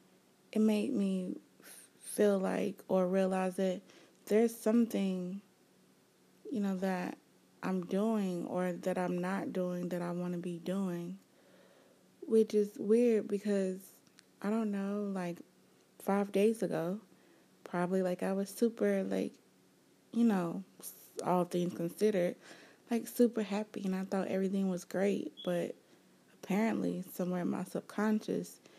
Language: English